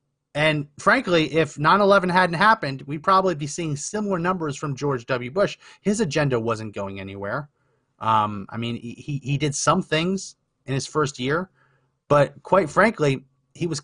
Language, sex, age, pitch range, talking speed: English, male, 30-49, 120-160 Hz, 170 wpm